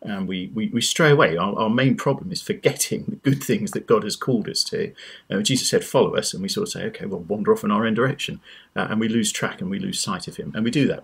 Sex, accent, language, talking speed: male, British, English, 295 wpm